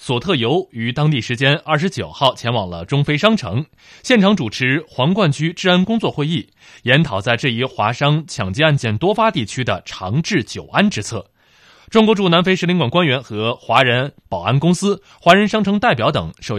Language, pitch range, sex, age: Chinese, 115-165 Hz, male, 20-39